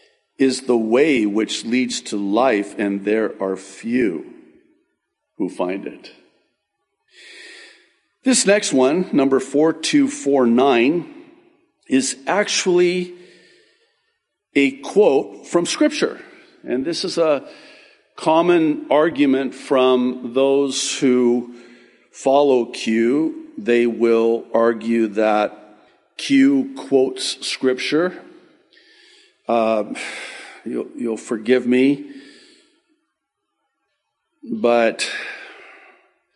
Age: 50-69